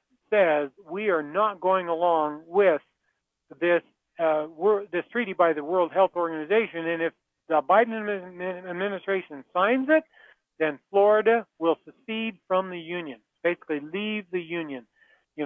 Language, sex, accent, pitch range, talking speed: English, male, American, 160-200 Hz, 140 wpm